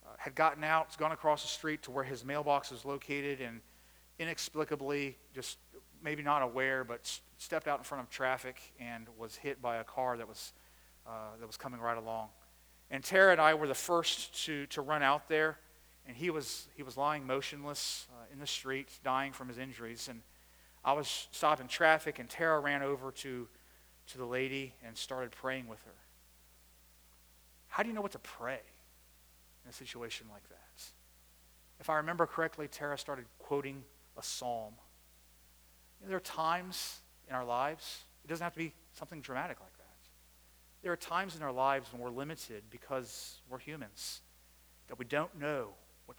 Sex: male